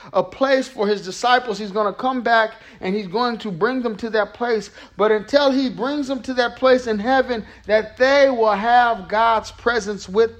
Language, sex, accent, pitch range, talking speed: English, male, American, 190-245 Hz, 210 wpm